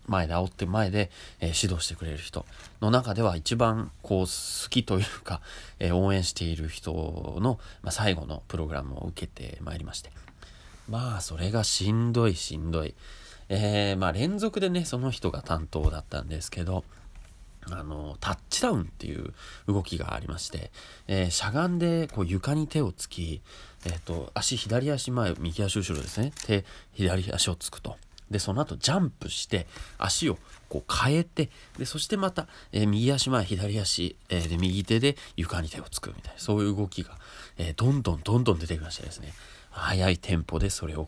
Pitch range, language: 80-110 Hz, Japanese